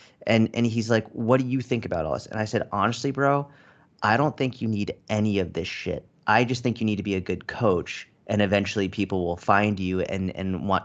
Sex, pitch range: male, 95-120 Hz